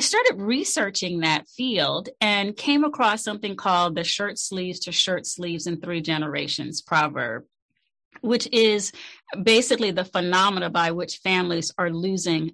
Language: English